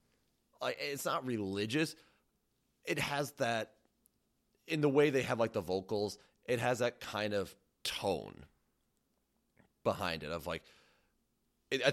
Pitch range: 90-115 Hz